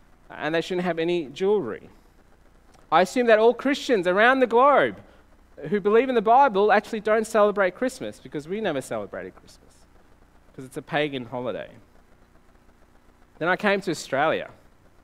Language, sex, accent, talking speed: English, male, Australian, 150 wpm